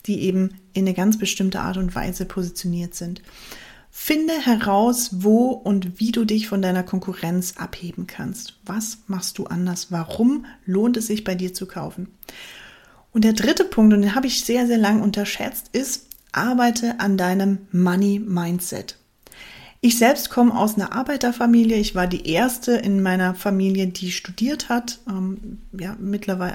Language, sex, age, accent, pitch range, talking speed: German, female, 30-49, German, 190-230 Hz, 160 wpm